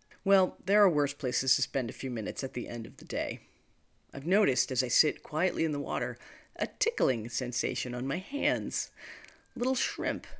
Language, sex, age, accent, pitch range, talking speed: English, female, 40-59, American, 125-175 Hz, 190 wpm